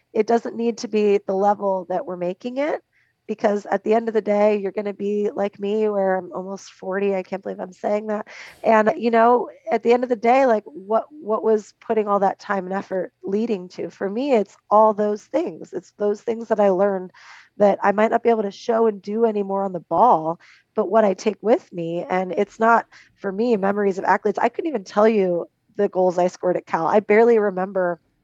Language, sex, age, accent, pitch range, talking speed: English, female, 20-39, American, 185-220 Hz, 230 wpm